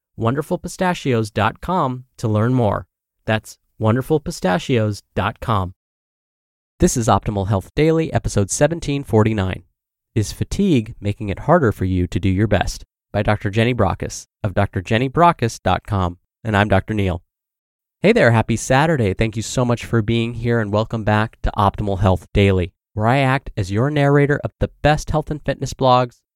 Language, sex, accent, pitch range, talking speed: English, male, American, 100-135 Hz, 150 wpm